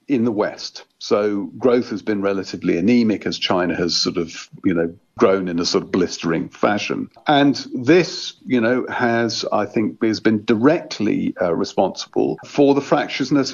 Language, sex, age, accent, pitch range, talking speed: English, male, 50-69, British, 100-135 Hz, 170 wpm